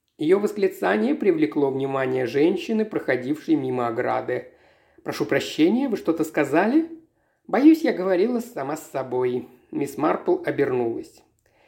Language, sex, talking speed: Russian, male, 115 wpm